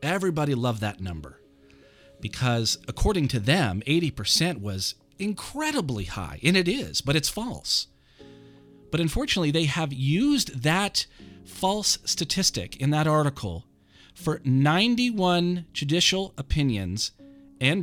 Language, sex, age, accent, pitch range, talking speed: English, male, 40-59, American, 110-150 Hz, 115 wpm